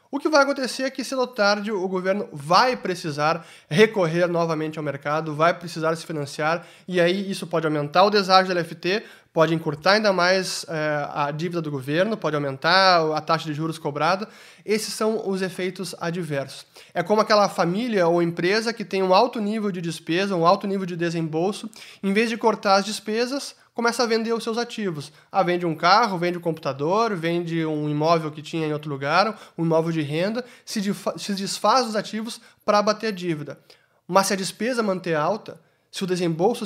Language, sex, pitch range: Portuguese, male, 160-205 Hz